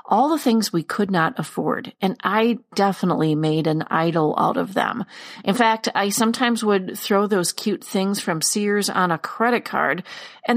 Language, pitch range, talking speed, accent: English, 180-245 Hz, 180 wpm, American